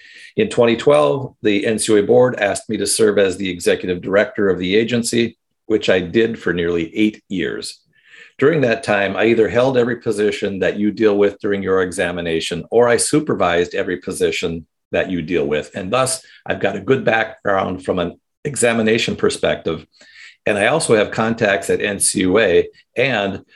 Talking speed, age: 170 wpm, 50-69